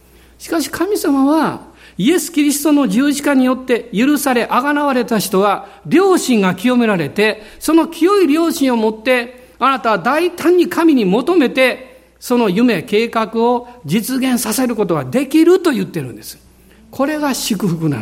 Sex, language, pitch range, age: male, Japanese, 170-270 Hz, 50-69